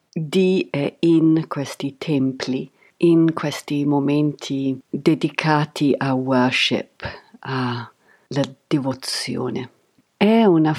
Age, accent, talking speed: 50-69, native, 85 wpm